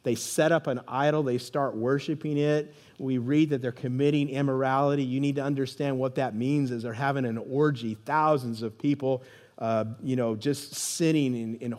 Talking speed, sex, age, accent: 185 wpm, male, 50-69, American